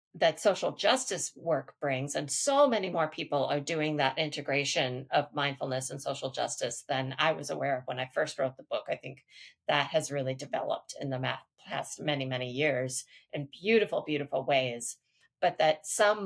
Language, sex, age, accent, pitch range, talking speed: English, female, 40-59, American, 140-160 Hz, 180 wpm